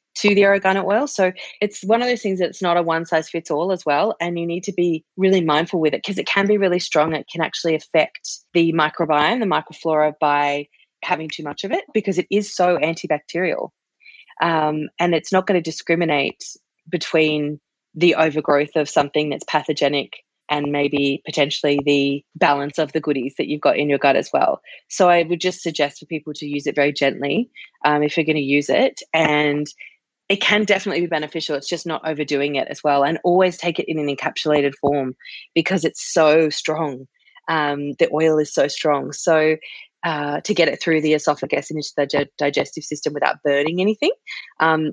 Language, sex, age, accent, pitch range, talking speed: English, female, 20-39, Australian, 145-180 Hz, 200 wpm